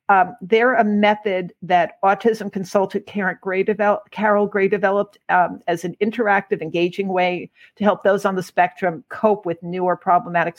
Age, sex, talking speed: 50-69, female, 165 wpm